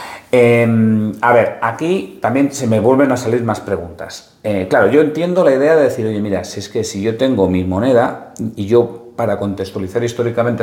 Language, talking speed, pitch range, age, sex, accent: Spanish, 200 wpm, 100-120 Hz, 40-59, male, Spanish